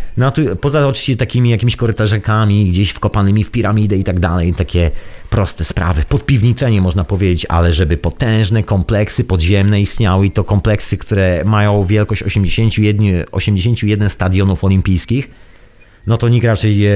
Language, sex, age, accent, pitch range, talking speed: Polish, male, 30-49, native, 100-125 Hz, 135 wpm